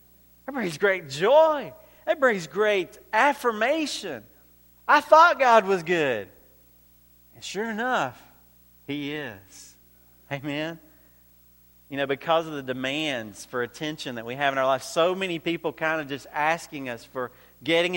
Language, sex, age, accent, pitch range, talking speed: English, male, 40-59, American, 115-160 Hz, 145 wpm